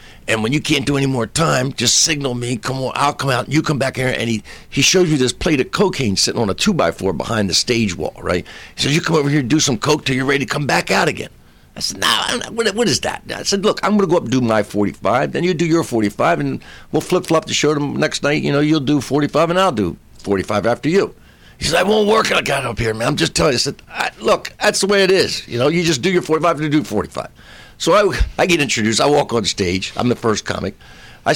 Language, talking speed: English, 295 wpm